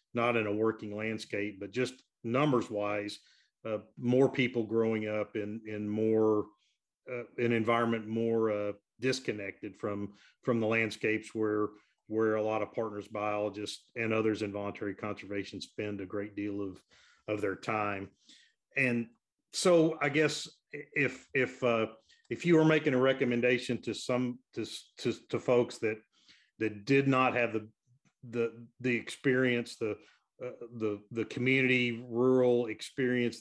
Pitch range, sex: 110-125 Hz, male